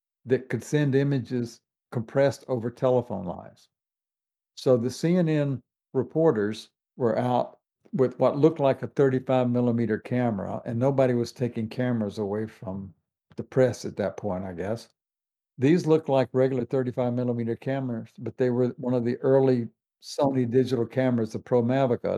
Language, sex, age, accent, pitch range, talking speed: English, male, 60-79, American, 115-135 Hz, 145 wpm